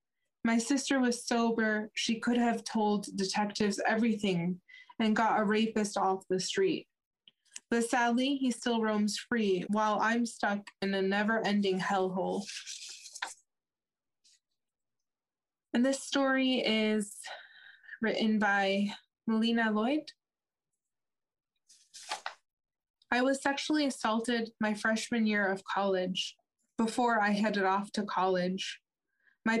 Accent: American